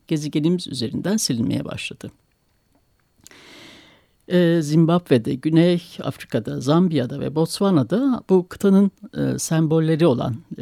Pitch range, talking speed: 150-215 Hz, 80 wpm